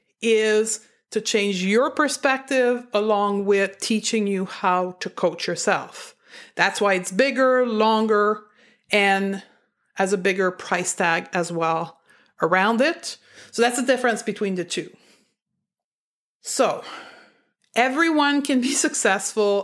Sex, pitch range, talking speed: female, 195-250 Hz, 120 wpm